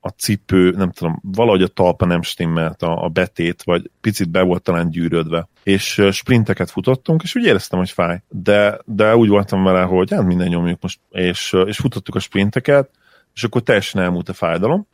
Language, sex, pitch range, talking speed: Hungarian, male, 90-105 Hz, 190 wpm